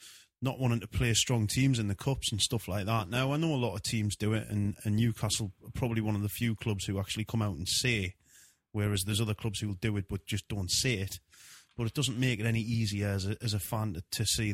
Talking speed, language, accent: 270 wpm, English, British